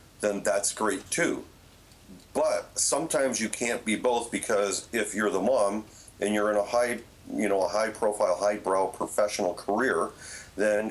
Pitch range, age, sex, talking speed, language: 90-110 Hz, 40-59, male, 165 wpm, English